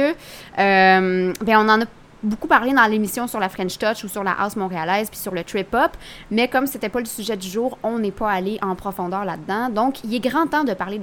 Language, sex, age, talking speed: French, female, 20-39, 245 wpm